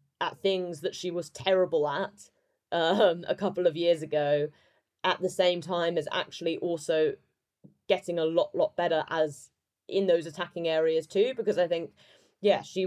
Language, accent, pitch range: English, British, 155-190 Hz